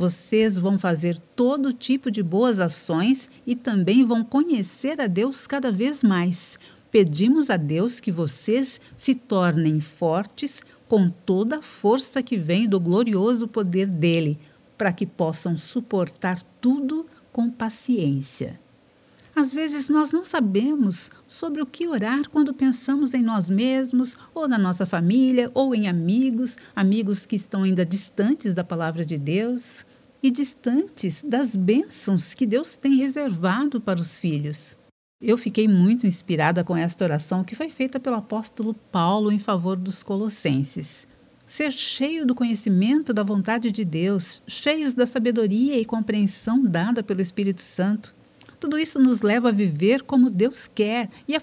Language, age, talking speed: Portuguese, 50-69, 150 wpm